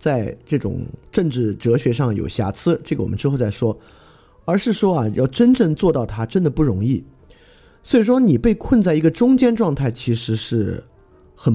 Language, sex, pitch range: Chinese, male, 110-150 Hz